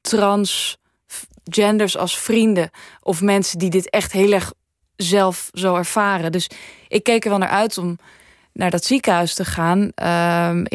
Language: Dutch